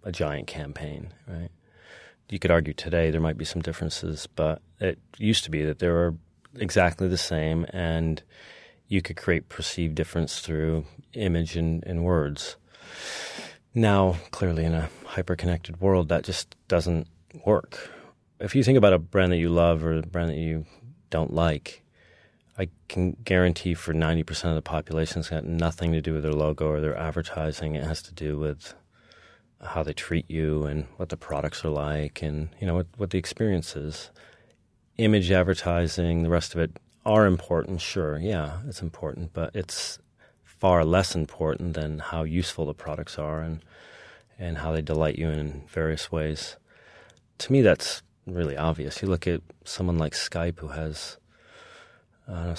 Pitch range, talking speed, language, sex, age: 80-90 Hz, 170 wpm, English, male, 30-49